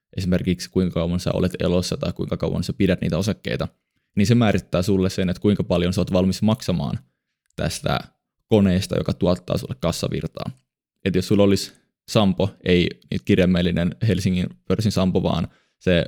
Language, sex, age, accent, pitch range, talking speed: Finnish, male, 20-39, native, 90-100 Hz, 160 wpm